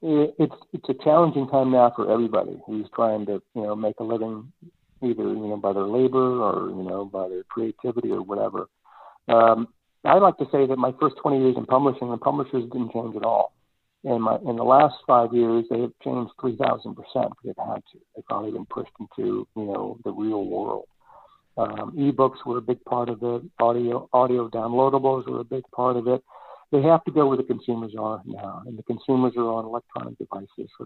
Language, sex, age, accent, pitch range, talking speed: English, male, 60-79, American, 115-130 Hz, 210 wpm